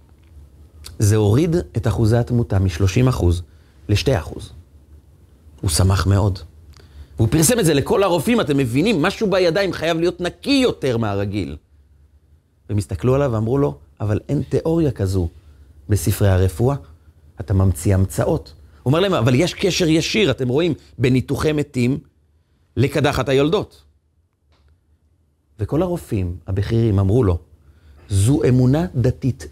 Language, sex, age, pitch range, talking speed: Hebrew, male, 30-49, 80-135 Hz, 120 wpm